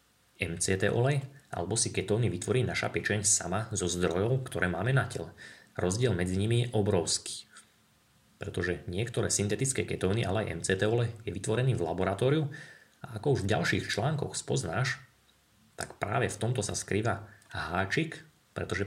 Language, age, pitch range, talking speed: Slovak, 20-39, 95-125 Hz, 155 wpm